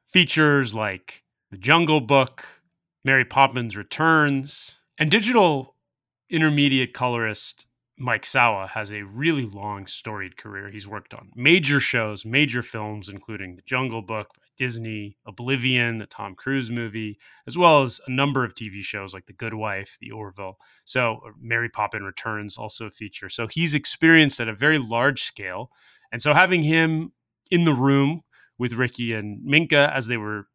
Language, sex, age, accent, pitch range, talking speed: English, male, 30-49, American, 110-140 Hz, 155 wpm